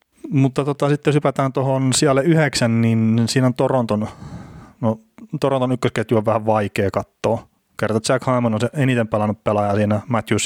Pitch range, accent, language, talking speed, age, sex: 105-120 Hz, native, Finnish, 165 wpm, 30-49, male